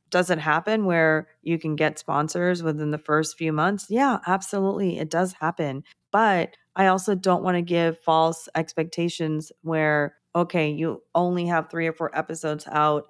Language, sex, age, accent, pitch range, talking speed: English, female, 30-49, American, 160-190 Hz, 170 wpm